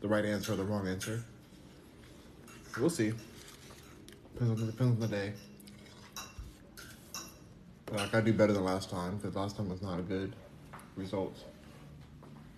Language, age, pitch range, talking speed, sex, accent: English, 30-49, 100-120 Hz, 145 wpm, male, American